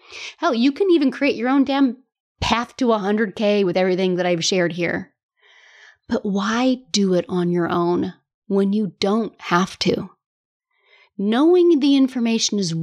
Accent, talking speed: American, 155 wpm